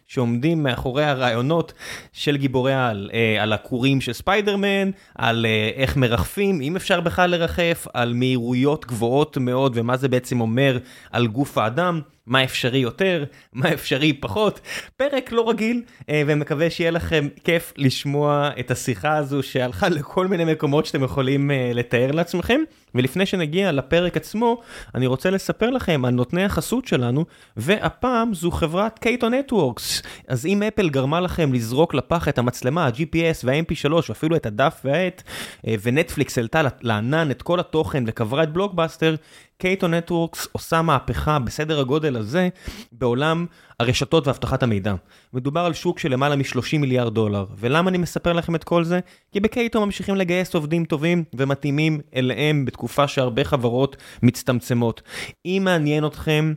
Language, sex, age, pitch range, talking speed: Hebrew, male, 20-39, 125-170 Hz, 140 wpm